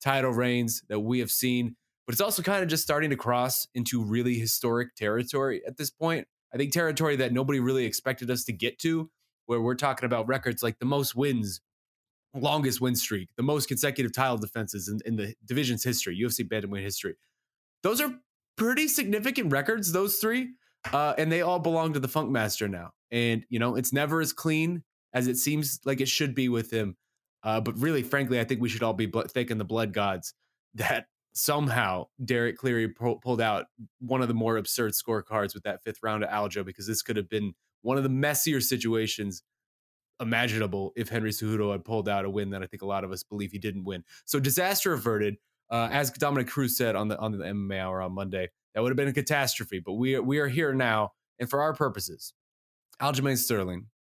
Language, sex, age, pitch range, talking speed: English, male, 20-39, 110-140 Hz, 210 wpm